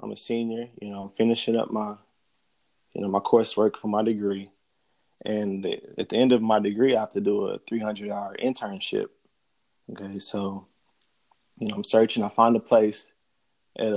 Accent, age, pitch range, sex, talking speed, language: American, 20-39, 100-110 Hz, male, 180 wpm, English